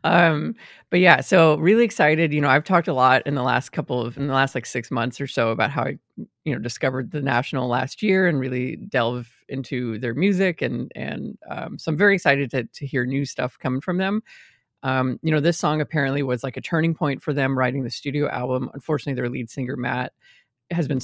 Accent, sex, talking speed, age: American, female, 230 wpm, 30-49